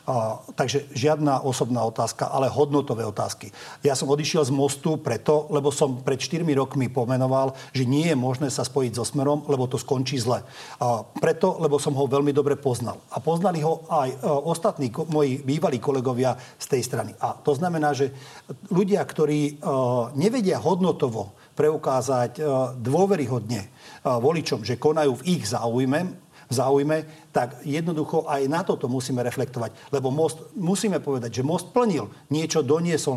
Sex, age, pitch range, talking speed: male, 50-69, 130-155 Hz, 150 wpm